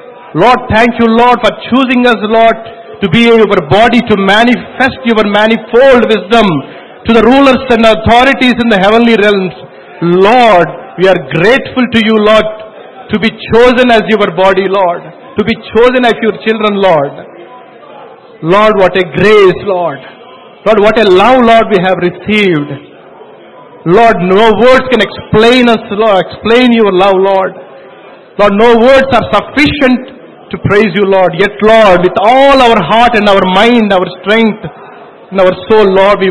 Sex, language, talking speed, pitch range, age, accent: male, English, 160 wpm, 195-235 Hz, 50-69, Indian